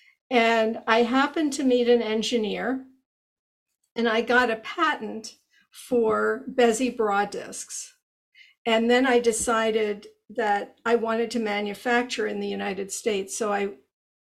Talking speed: 130 wpm